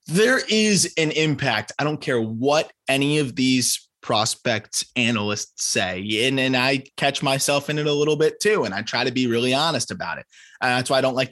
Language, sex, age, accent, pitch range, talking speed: English, male, 20-39, American, 110-140 Hz, 215 wpm